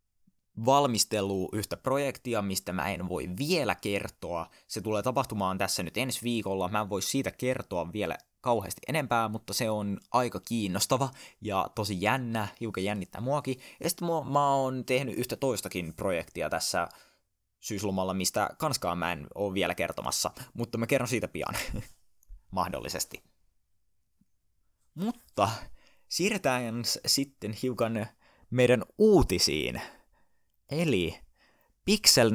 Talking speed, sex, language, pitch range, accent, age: 120 wpm, male, Finnish, 95-130 Hz, native, 20-39